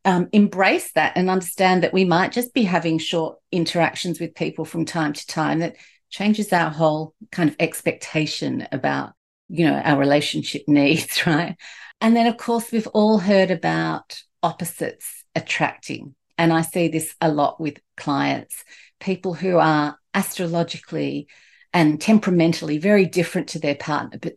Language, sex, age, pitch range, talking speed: English, female, 50-69, 160-195 Hz, 155 wpm